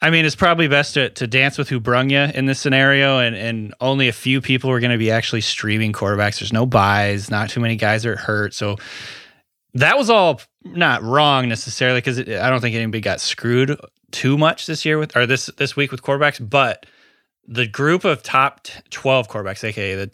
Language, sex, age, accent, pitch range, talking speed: English, male, 20-39, American, 110-135 Hz, 215 wpm